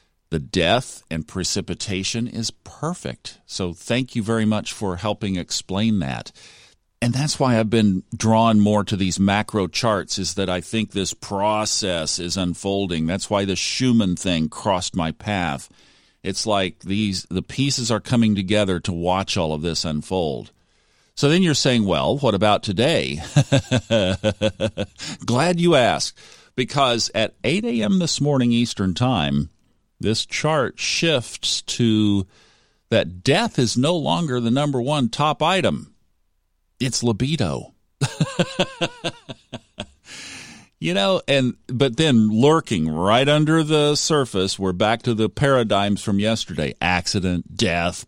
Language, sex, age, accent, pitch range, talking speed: English, male, 50-69, American, 90-125 Hz, 135 wpm